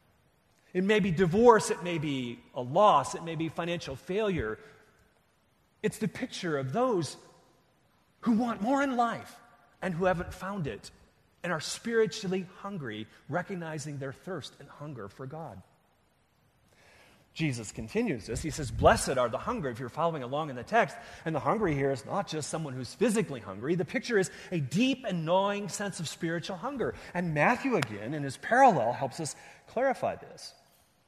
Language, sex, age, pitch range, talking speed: English, male, 30-49, 145-215 Hz, 170 wpm